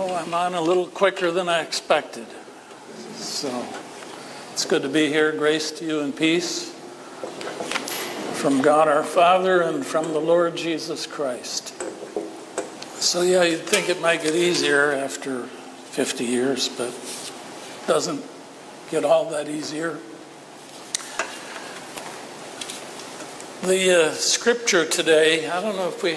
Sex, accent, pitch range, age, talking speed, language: male, American, 150-175 Hz, 60-79, 130 wpm, English